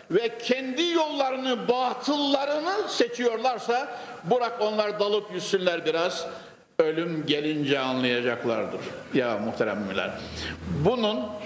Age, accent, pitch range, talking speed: 60-79, native, 170-235 Hz, 90 wpm